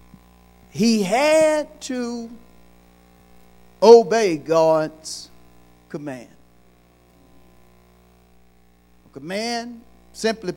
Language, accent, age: English, American, 50-69